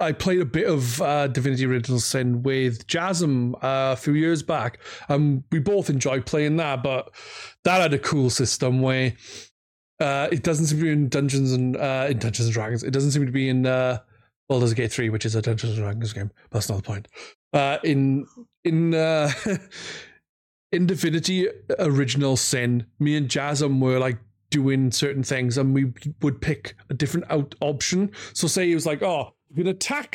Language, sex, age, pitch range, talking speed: English, male, 30-49, 125-165 Hz, 200 wpm